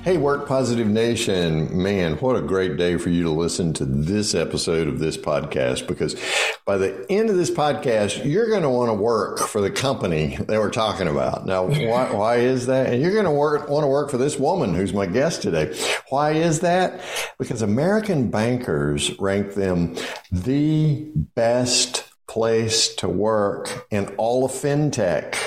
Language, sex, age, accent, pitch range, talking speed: English, male, 60-79, American, 90-140 Hz, 175 wpm